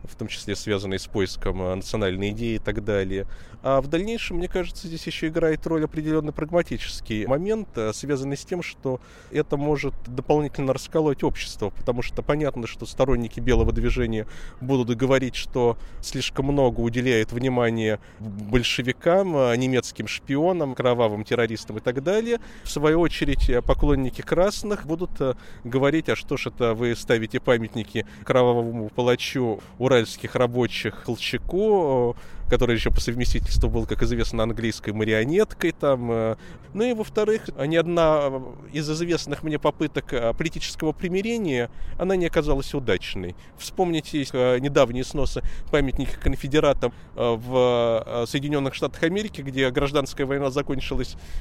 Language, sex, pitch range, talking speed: Russian, male, 115-155 Hz, 130 wpm